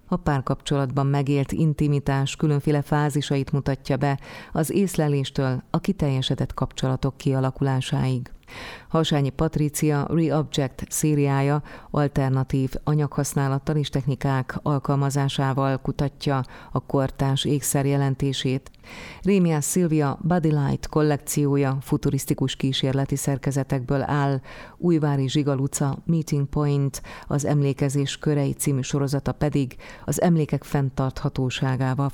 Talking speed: 90 wpm